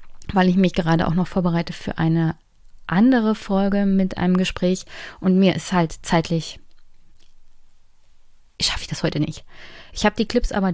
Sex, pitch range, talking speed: female, 170-205 Hz, 160 wpm